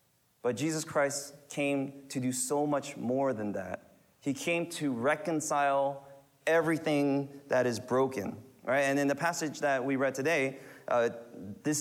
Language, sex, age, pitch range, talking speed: English, male, 30-49, 110-140 Hz, 150 wpm